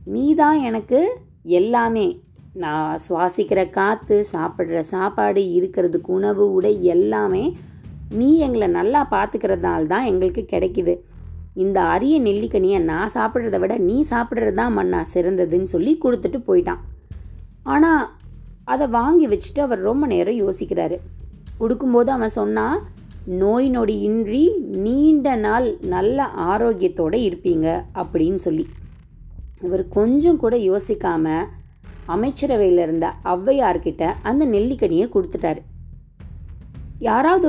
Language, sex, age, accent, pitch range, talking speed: Tamil, female, 20-39, native, 180-285 Hz, 100 wpm